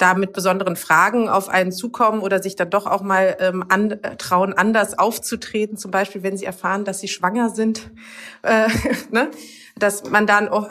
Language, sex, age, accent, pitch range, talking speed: German, female, 30-49, German, 180-200 Hz, 180 wpm